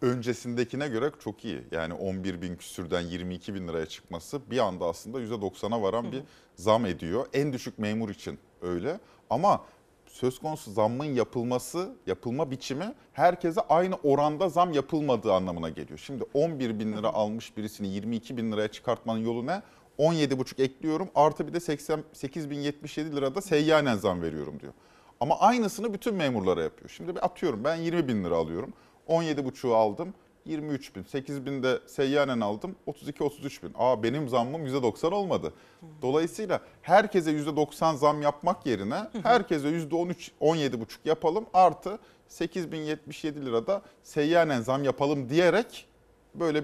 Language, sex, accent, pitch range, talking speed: Turkish, male, native, 115-165 Hz, 145 wpm